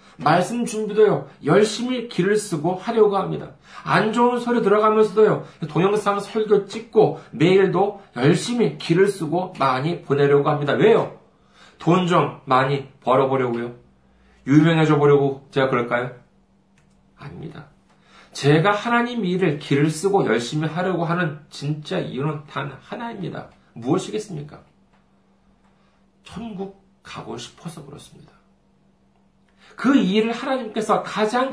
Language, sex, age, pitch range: Korean, male, 40-59, 150-210 Hz